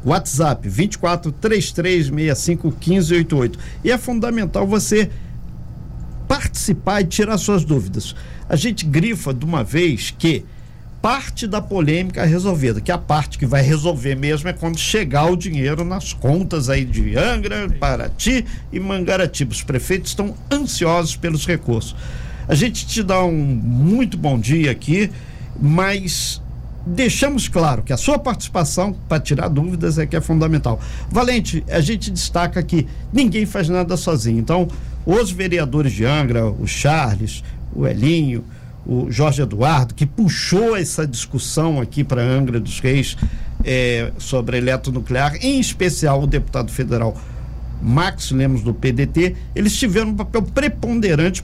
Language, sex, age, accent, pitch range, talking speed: Portuguese, male, 50-69, Brazilian, 130-190 Hz, 140 wpm